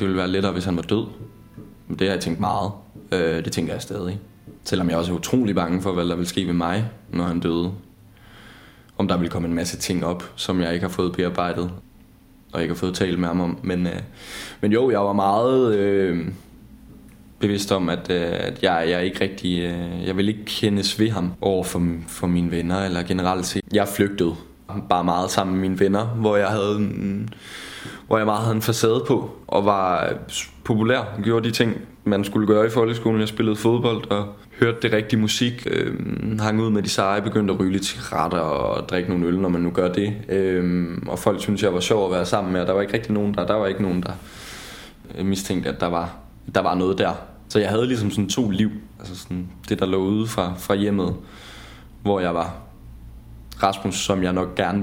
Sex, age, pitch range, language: male, 20-39, 90-105 Hz, Danish